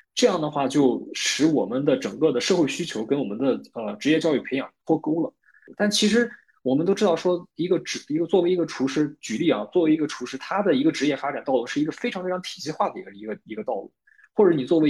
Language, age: Chinese, 20-39